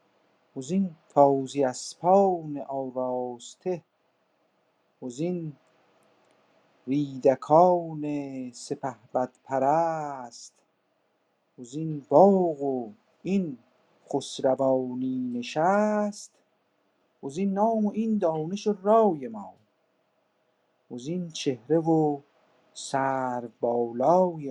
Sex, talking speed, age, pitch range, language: male, 65 wpm, 50-69, 130-175 Hz, Persian